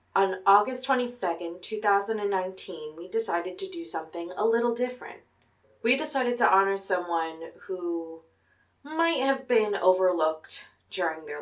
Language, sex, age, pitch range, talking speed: English, female, 20-39, 165-220 Hz, 125 wpm